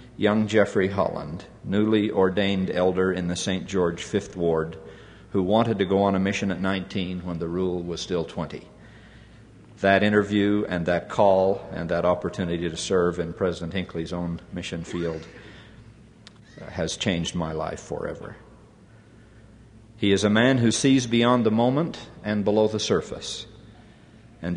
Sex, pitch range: male, 95-115 Hz